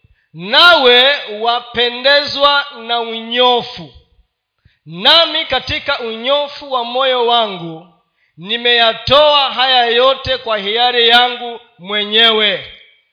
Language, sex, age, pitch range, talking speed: Swahili, male, 40-59, 200-270 Hz, 80 wpm